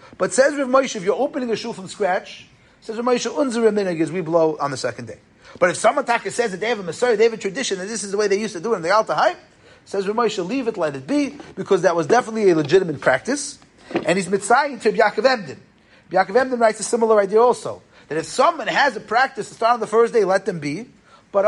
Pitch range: 165-235 Hz